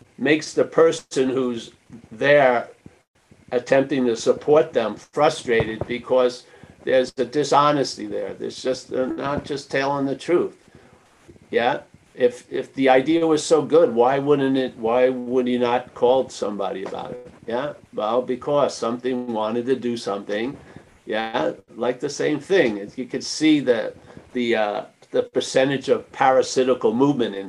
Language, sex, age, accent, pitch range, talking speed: English, male, 50-69, American, 120-160 Hz, 155 wpm